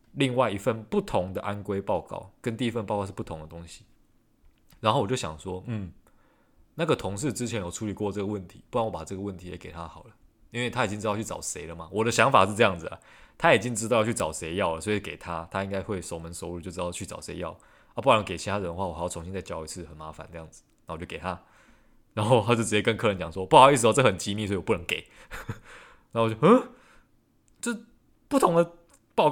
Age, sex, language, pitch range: 20-39, male, Chinese, 90-110 Hz